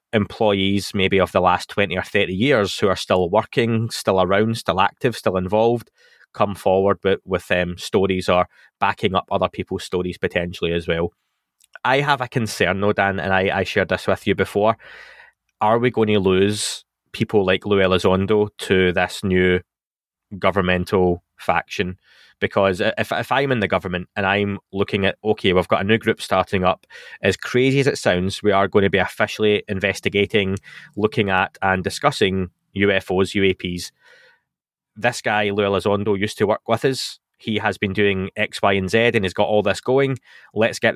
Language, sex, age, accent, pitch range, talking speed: English, male, 20-39, British, 95-105 Hz, 185 wpm